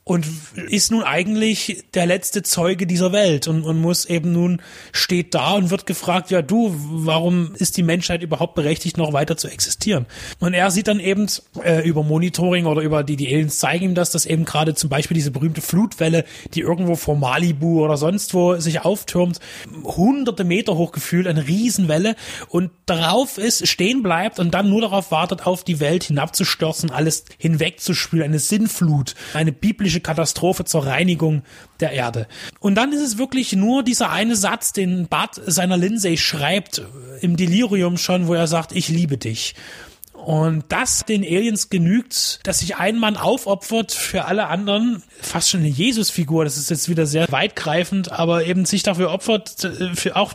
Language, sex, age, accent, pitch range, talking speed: German, male, 30-49, German, 160-190 Hz, 175 wpm